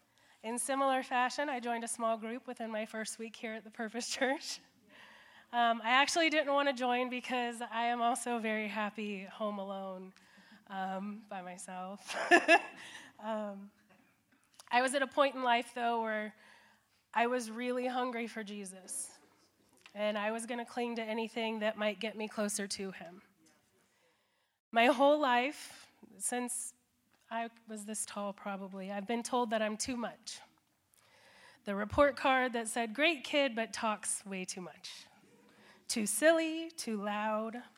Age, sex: 20-39, female